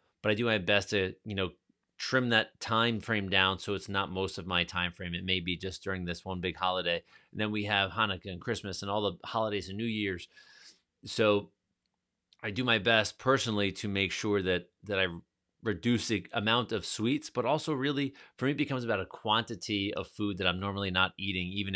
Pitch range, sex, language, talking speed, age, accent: 95-110 Hz, male, English, 220 wpm, 30-49, American